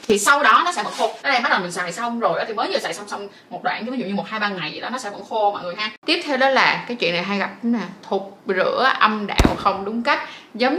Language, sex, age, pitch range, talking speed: Vietnamese, female, 20-39, 200-260 Hz, 315 wpm